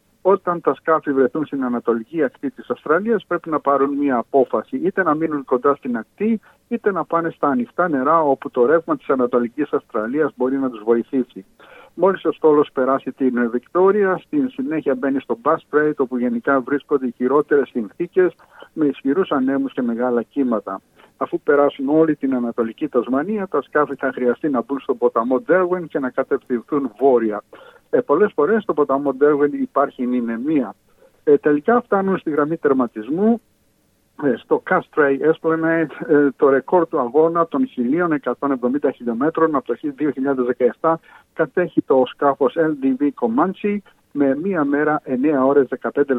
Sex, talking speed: male, 150 wpm